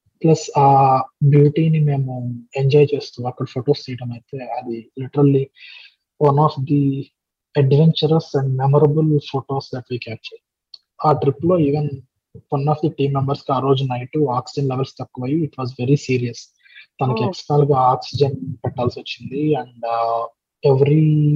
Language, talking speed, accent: Telugu, 125 wpm, native